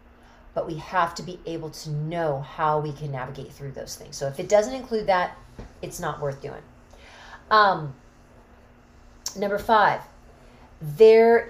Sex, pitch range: female, 160-220 Hz